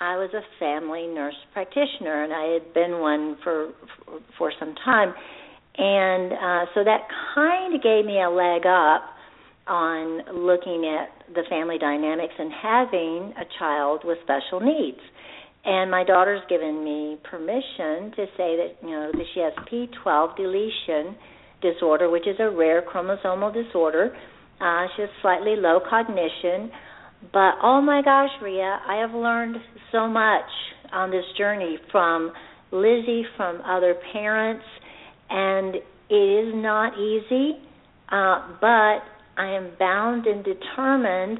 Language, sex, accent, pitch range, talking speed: English, female, American, 175-225 Hz, 145 wpm